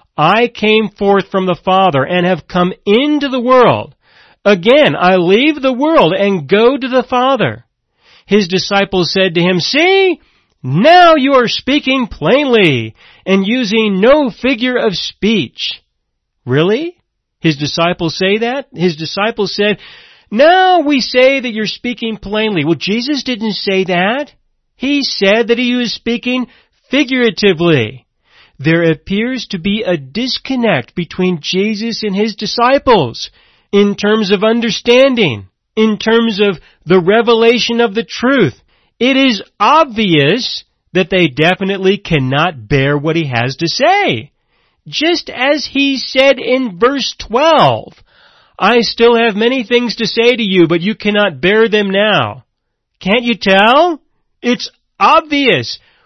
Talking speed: 140 wpm